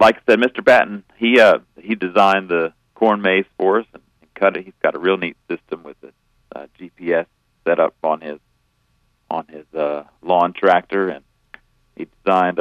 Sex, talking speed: male, 190 wpm